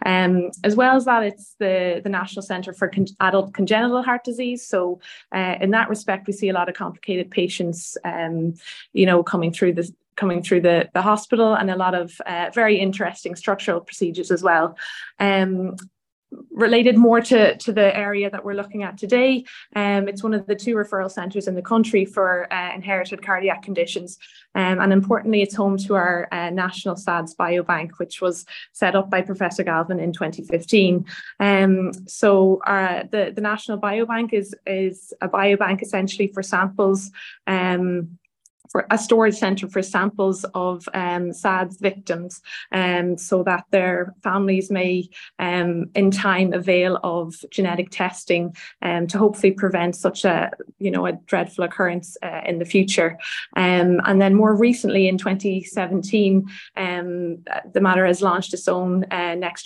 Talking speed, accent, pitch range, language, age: 160 wpm, Irish, 180-200 Hz, English, 20-39